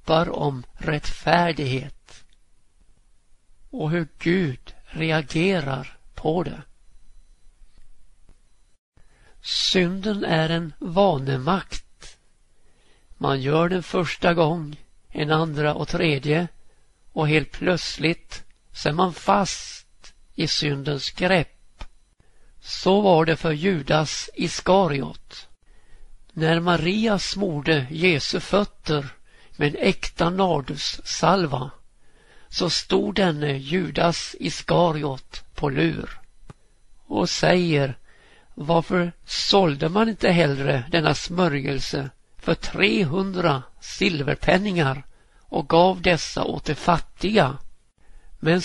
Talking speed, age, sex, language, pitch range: 90 wpm, 60-79, male, Swedish, 145-180 Hz